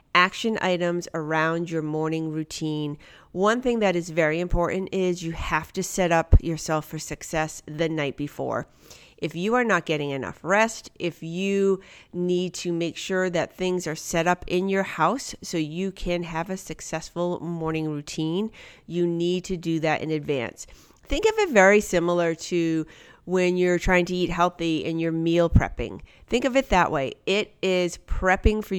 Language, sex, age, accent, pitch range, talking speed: English, female, 40-59, American, 160-185 Hz, 175 wpm